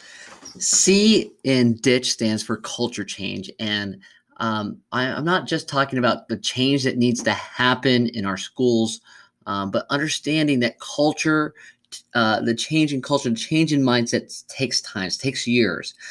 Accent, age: American, 30-49